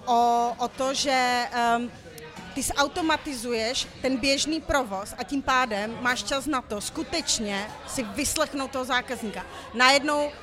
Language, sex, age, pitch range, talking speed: Czech, female, 40-59, 235-265 Hz, 130 wpm